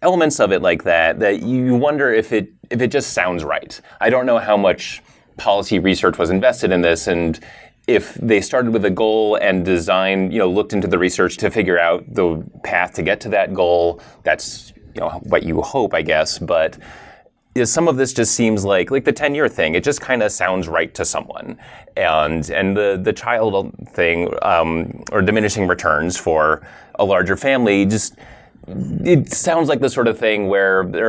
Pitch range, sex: 95-125 Hz, male